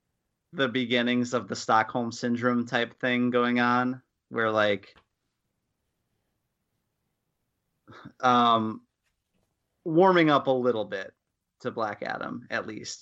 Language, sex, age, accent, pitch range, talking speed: English, male, 30-49, American, 115-130 Hz, 105 wpm